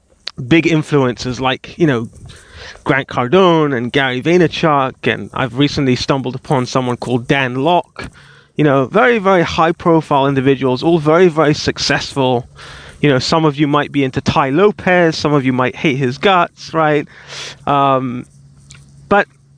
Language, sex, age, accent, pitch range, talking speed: English, male, 30-49, British, 130-165 Hz, 155 wpm